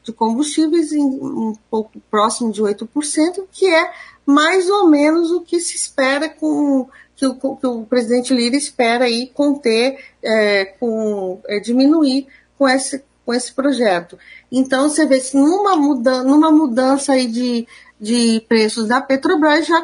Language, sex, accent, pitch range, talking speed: Portuguese, female, Brazilian, 240-290 Hz, 155 wpm